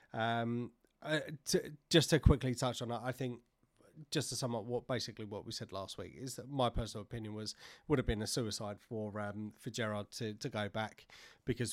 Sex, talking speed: male, 215 wpm